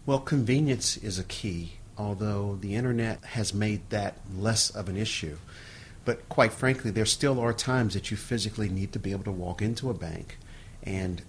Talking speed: 185 wpm